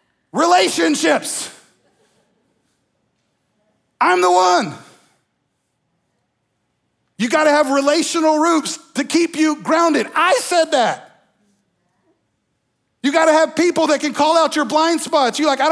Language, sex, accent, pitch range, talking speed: English, male, American, 185-300 Hz, 120 wpm